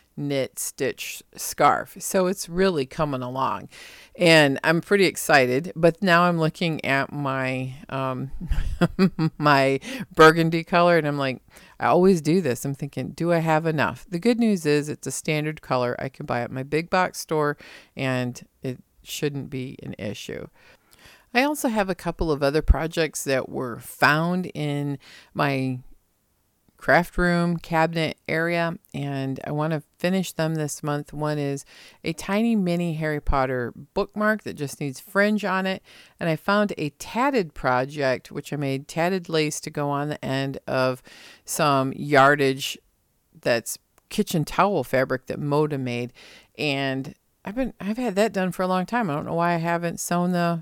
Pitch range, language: 135-175 Hz, English